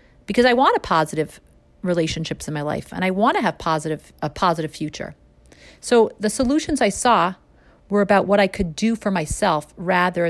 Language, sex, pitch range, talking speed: English, female, 160-215 Hz, 185 wpm